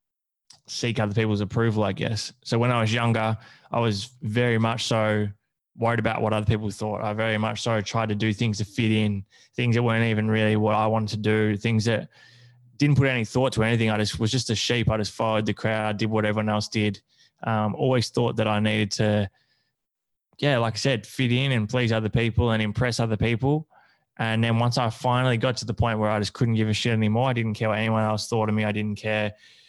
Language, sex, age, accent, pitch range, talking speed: English, male, 20-39, Australian, 105-120 Hz, 235 wpm